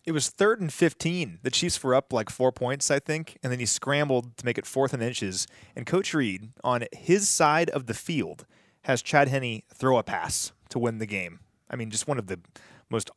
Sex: male